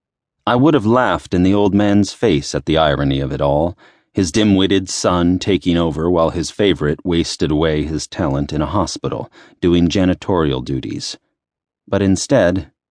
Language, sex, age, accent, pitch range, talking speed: English, male, 40-59, American, 80-100 Hz, 165 wpm